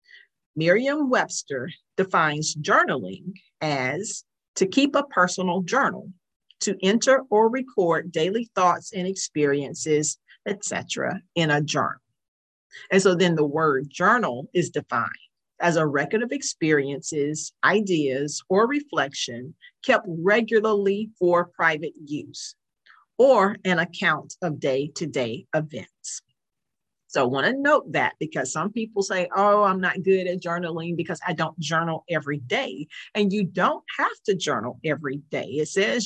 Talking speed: 135 wpm